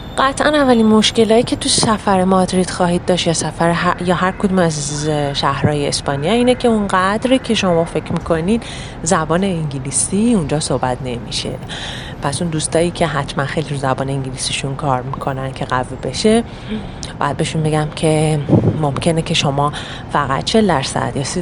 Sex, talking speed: female, 155 wpm